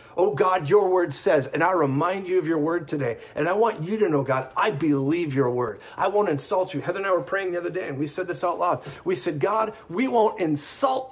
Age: 40-59